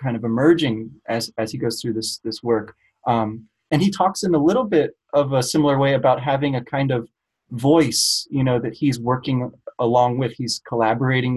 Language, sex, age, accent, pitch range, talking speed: English, male, 20-39, American, 120-145 Hz, 200 wpm